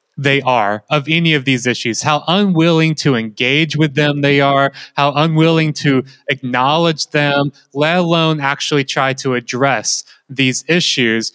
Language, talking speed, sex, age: English, 150 wpm, male, 20-39